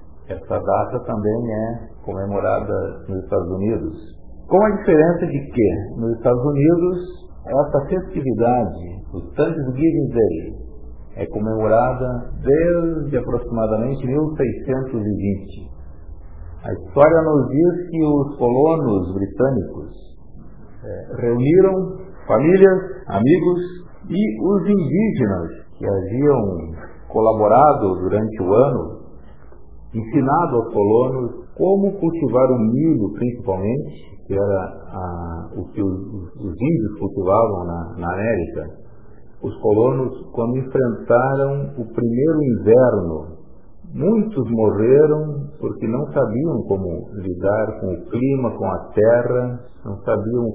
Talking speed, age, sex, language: 105 wpm, 50-69, male, Portuguese